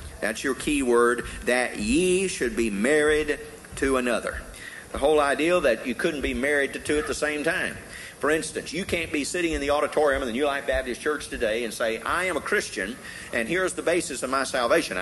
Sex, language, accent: male, English, American